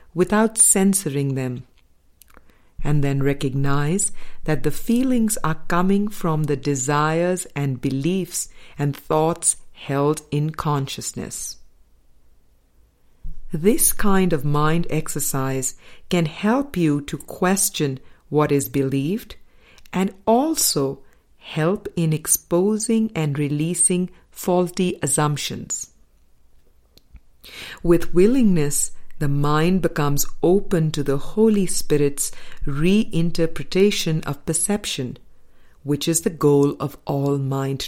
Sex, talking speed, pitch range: female, 100 wpm, 140-175 Hz